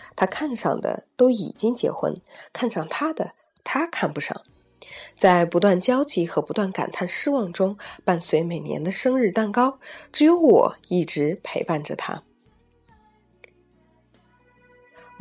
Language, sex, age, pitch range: Chinese, female, 20-39, 175-280 Hz